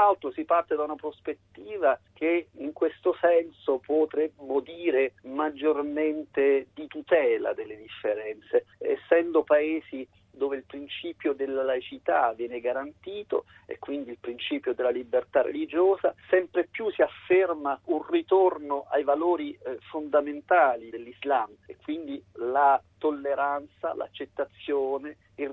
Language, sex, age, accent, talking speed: Italian, male, 50-69, native, 115 wpm